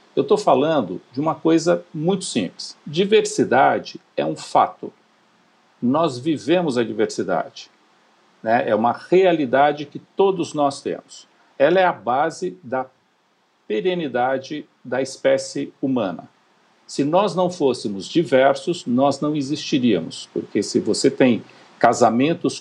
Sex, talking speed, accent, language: male, 120 wpm, Brazilian, Portuguese